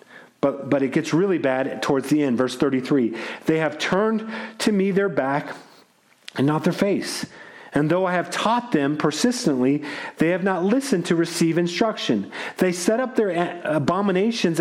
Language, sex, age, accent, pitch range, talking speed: English, male, 40-59, American, 140-185 Hz, 170 wpm